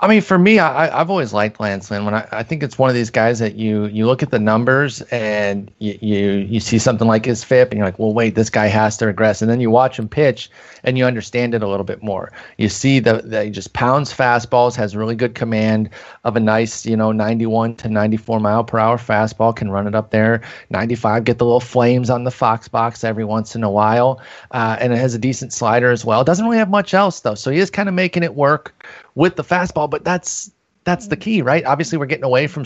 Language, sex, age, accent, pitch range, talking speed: English, male, 30-49, American, 110-135 Hz, 255 wpm